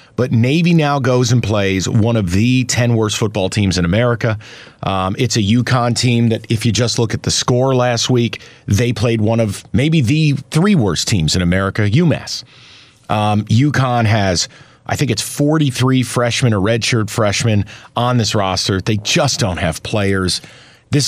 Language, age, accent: English, 40-59, American